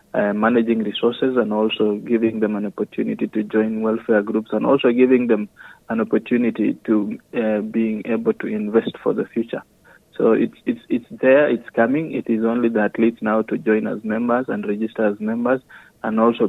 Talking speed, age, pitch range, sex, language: 185 wpm, 30-49, 110-120 Hz, male, Swahili